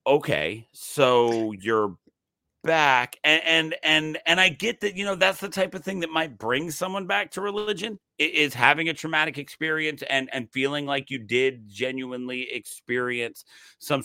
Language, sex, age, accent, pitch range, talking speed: English, male, 40-59, American, 125-160 Hz, 165 wpm